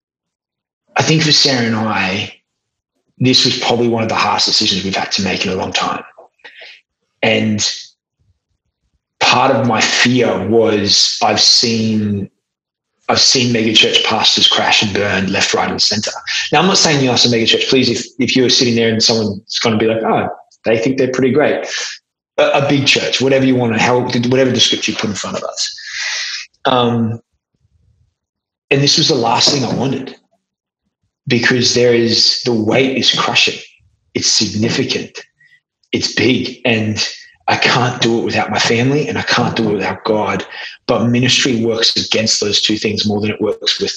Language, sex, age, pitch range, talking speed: English, male, 20-39, 110-125 Hz, 180 wpm